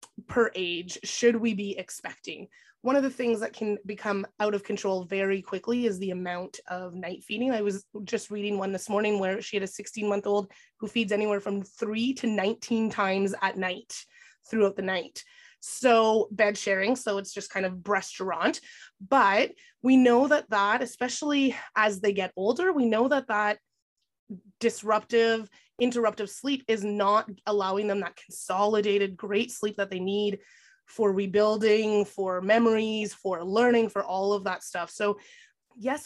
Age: 20-39